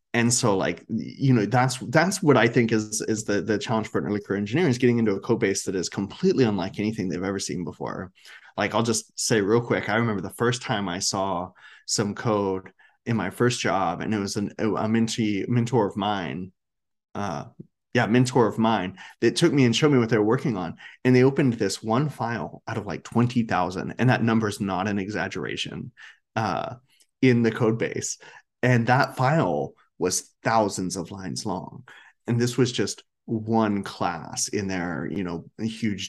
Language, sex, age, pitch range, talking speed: English, male, 20-39, 100-125 Hz, 200 wpm